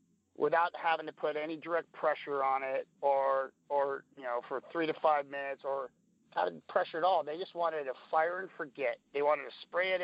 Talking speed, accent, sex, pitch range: 210 wpm, American, male, 145-175 Hz